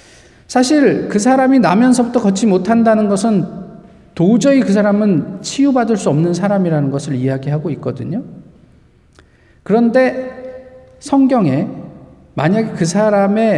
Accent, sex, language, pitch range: native, male, Korean, 170-230 Hz